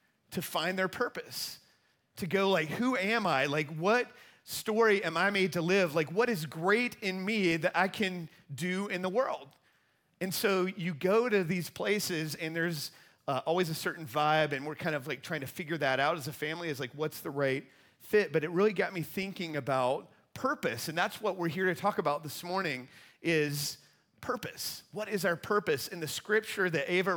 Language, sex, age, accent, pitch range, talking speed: English, male, 40-59, American, 150-190 Hz, 205 wpm